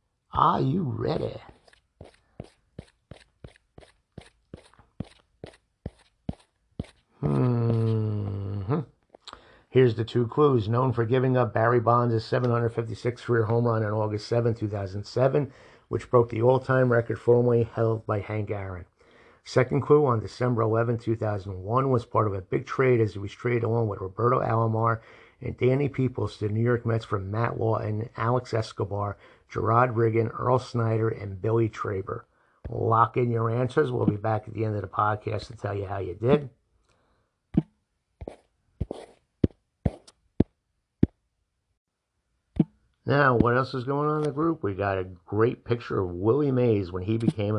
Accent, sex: American, male